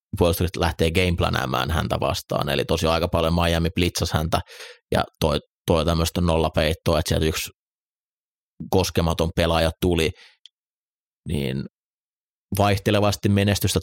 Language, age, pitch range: Finnish, 30-49, 80-90 Hz